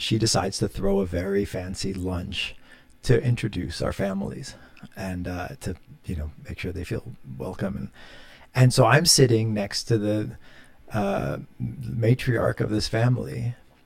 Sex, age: male, 40-59